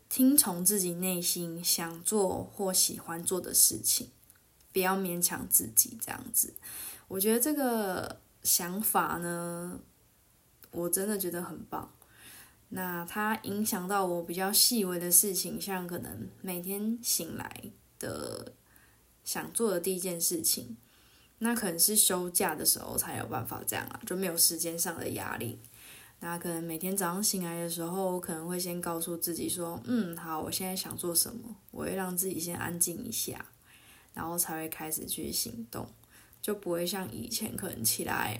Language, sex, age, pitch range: Chinese, female, 10-29, 170-195 Hz